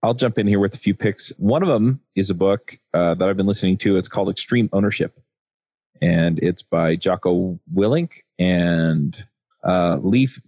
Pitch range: 95-115 Hz